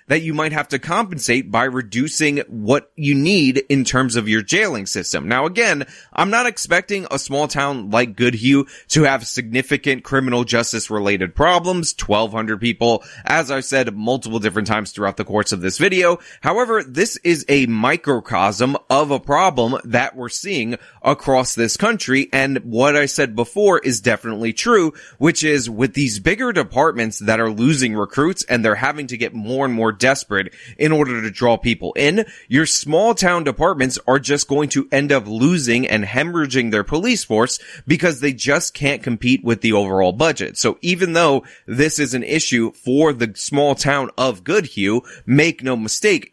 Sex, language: male, English